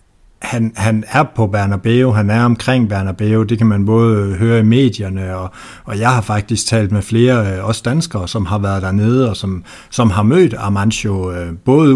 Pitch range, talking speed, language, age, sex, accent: 100-125 Hz, 185 wpm, Danish, 60-79, male, native